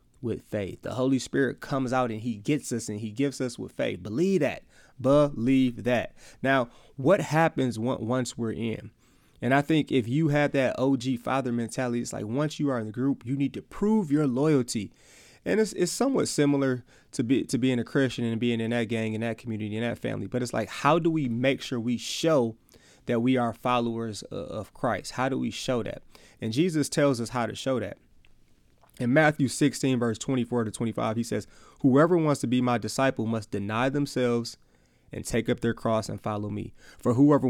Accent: American